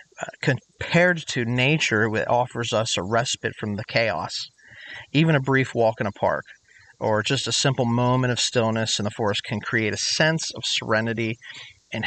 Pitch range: 115-140 Hz